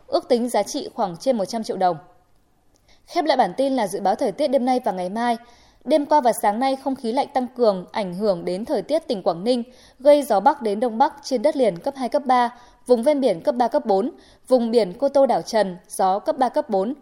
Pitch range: 220-280 Hz